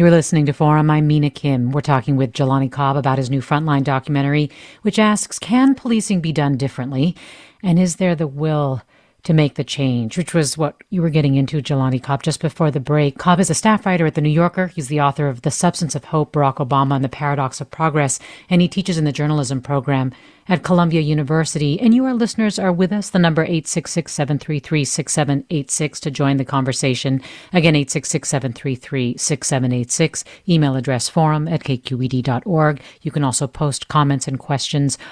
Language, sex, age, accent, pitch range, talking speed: English, female, 40-59, American, 140-170 Hz, 185 wpm